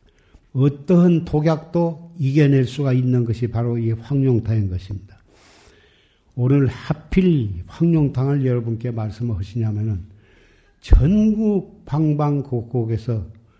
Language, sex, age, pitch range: Korean, male, 60-79, 115-150 Hz